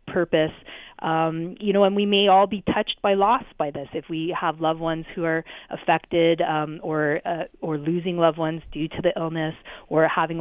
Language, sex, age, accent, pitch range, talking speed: English, female, 30-49, American, 165-195 Hz, 200 wpm